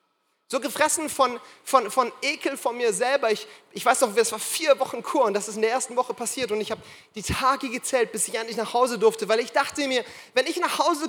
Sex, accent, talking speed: male, German, 250 wpm